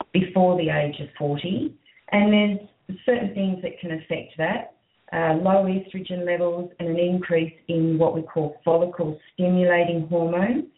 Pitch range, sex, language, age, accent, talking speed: 155-190 Hz, female, English, 40-59, Australian, 150 wpm